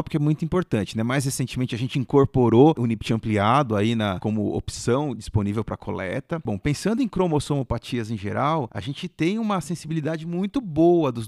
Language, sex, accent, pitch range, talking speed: Portuguese, male, Brazilian, 120-170 Hz, 180 wpm